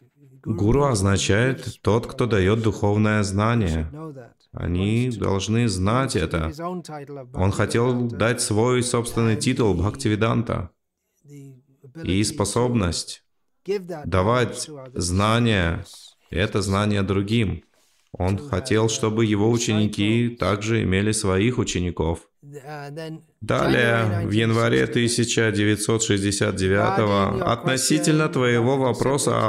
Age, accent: 30-49, native